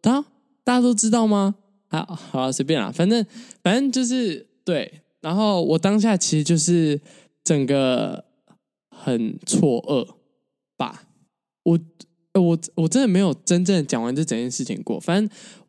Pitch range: 155-215 Hz